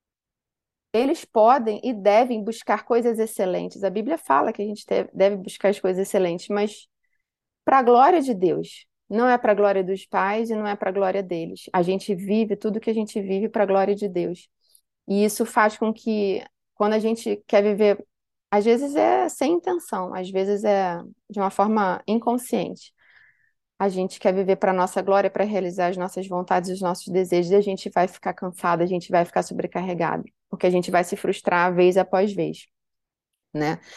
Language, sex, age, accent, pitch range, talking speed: Portuguese, female, 20-39, Brazilian, 190-225 Hz, 195 wpm